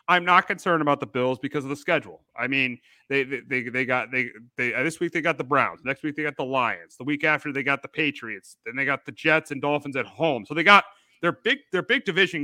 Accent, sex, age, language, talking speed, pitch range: American, male, 30-49, English, 260 wpm, 135-165 Hz